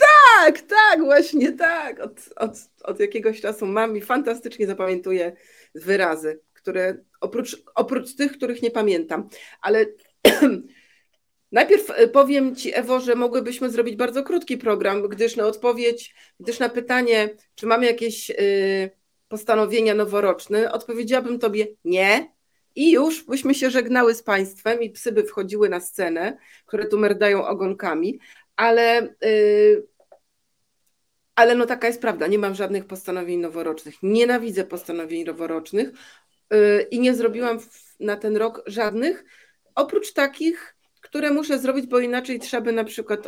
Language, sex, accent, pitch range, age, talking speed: Polish, female, native, 195-250 Hz, 40-59, 130 wpm